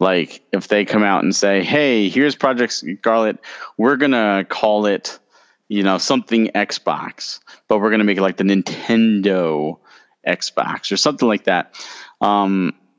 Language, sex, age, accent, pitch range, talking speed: English, male, 30-49, American, 100-135 Hz, 155 wpm